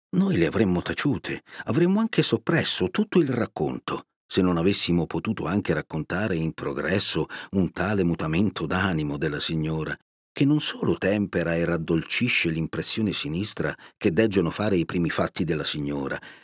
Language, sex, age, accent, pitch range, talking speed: Italian, male, 50-69, native, 85-130 Hz, 145 wpm